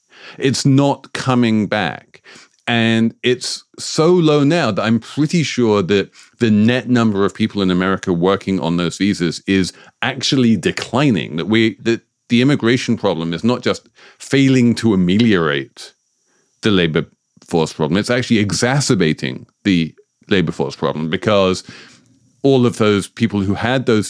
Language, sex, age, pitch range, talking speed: English, male, 40-59, 95-125 Hz, 145 wpm